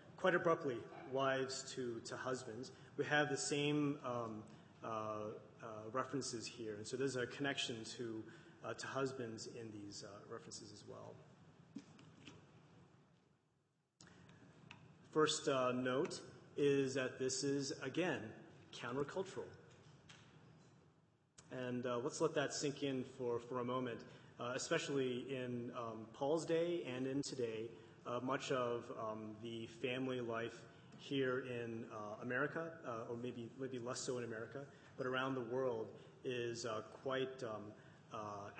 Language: English